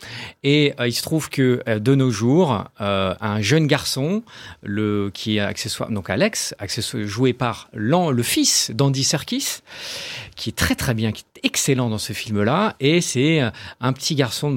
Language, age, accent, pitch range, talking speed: French, 40-59, French, 115-155 Hz, 185 wpm